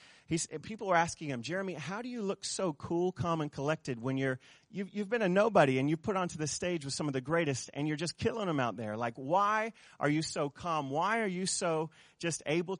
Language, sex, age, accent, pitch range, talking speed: English, male, 40-59, American, 130-175 Hz, 250 wpm